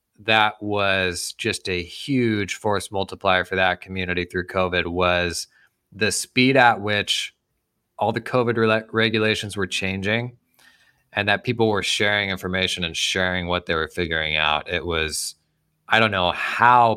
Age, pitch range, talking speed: 20-39, 95-130 Hz, 150 wpm